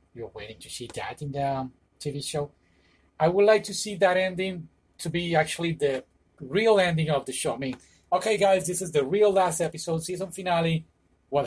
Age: 30-49